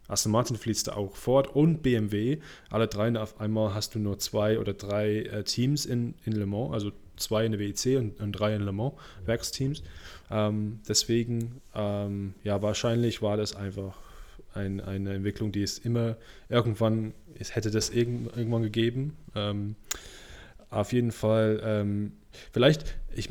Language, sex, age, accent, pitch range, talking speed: German, male, 20-39, German, 105-120 Hz, 165 wpm